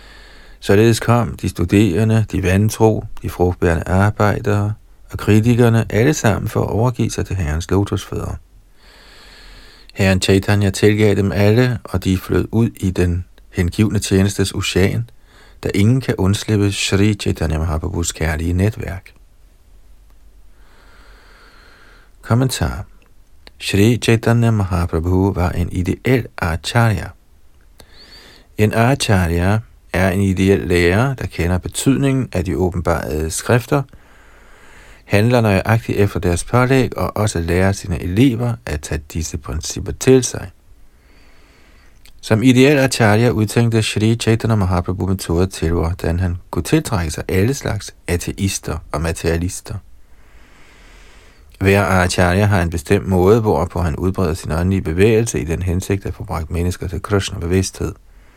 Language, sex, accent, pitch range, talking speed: Danish, male, native, 85-110 Hz, 125 wpm